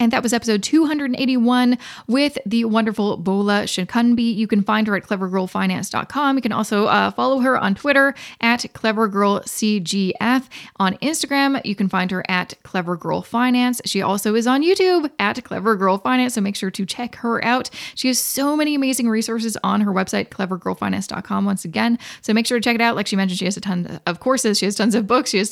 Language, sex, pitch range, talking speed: English, female, 200-260 Hz, 195 wpm